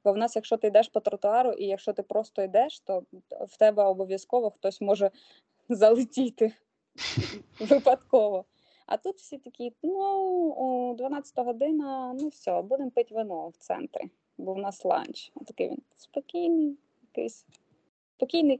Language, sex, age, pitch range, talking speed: Ukrainian, female, 20-39, 195-250 Hz, 145 wpm